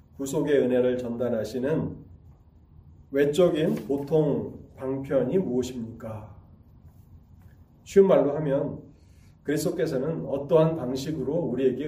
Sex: male